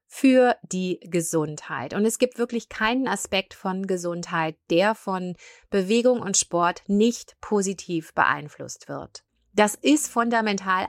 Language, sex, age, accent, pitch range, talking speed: German, female, 30-49, German, 170-220 Hz, 125 wpm